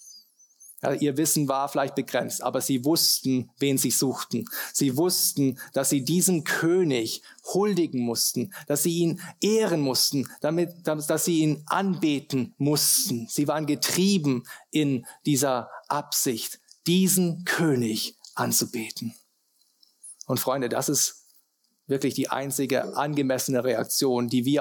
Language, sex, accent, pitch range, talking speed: German, male, German, 135-160 Hz, 120 wpm